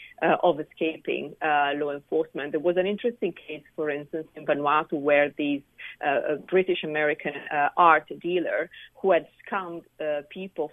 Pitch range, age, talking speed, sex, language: 145-165 Hz, 40-59, 155 wpm, female, English